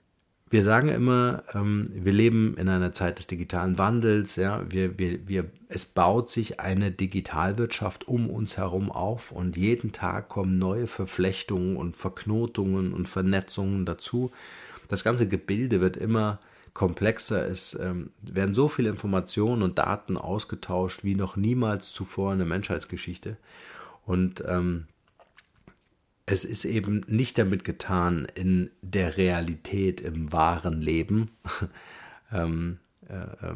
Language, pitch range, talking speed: German, 90-105 Hz, 130 wpm